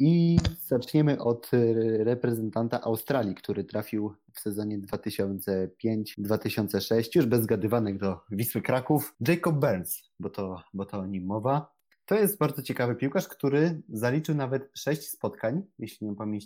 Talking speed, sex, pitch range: 135 wpm, male, 105-140 Hz